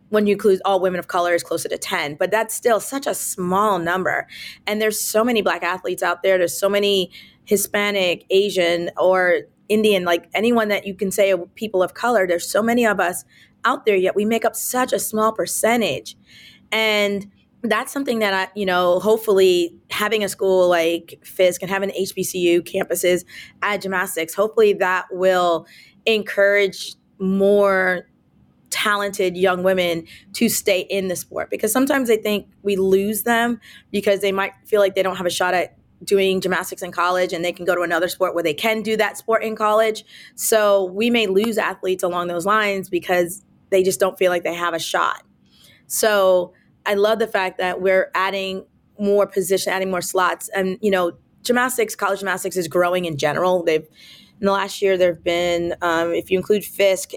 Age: 20-39